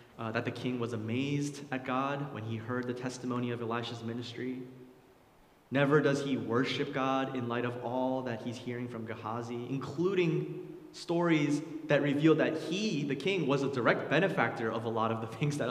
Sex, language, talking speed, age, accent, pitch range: male, English, 185 wpm, 20-39, American, 115-145 Hz